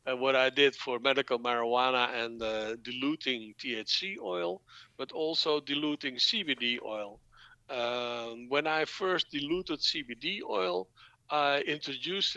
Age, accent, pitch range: 60-79, Dutch, 125-150 Hz